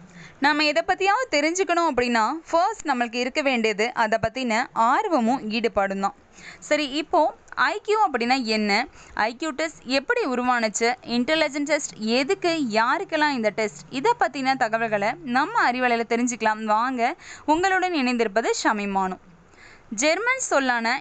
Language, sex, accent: Tamil, female, native